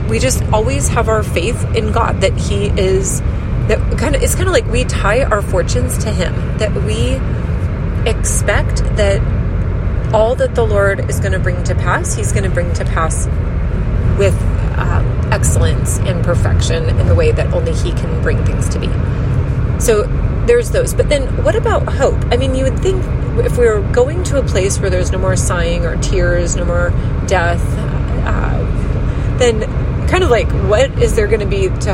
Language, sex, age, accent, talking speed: English, female, 30-49, American, 190 wpm